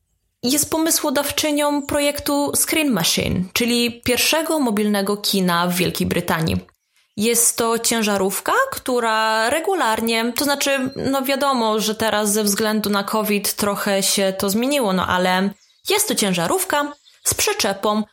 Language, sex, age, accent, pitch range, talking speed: Polish, female, 20-39, native, 185-265 Hz, 125 wpm